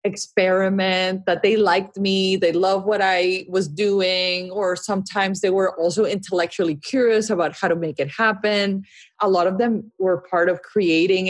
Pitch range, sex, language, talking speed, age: 180-240 Hz, female, English, 170 wpm, 30-49